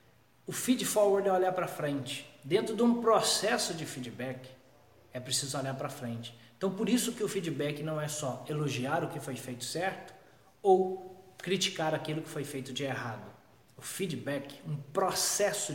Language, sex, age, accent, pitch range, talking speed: Portuguese, male, 20-39, Brazilian, 130-165 Hz, 170 wpm